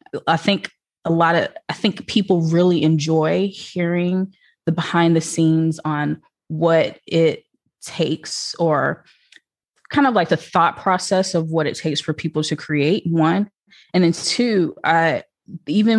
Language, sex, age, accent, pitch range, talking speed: English, female, 20-39, American, 155-180 Hz, 150 wpm